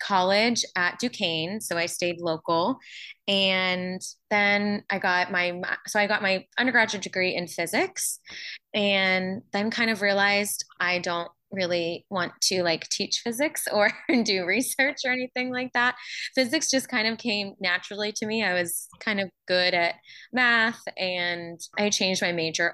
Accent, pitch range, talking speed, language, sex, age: American, 175-225 Hz, 160 wpm, English, female, 20-39